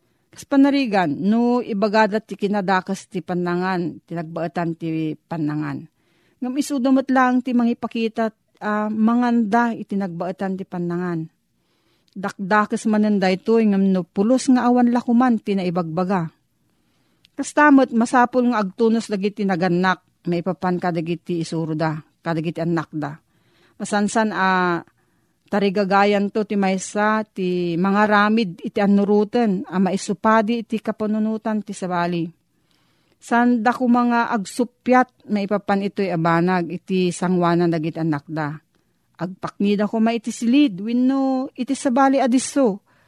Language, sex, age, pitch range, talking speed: Filipino, female, 40-59, 180-235 Hz, 120 wpm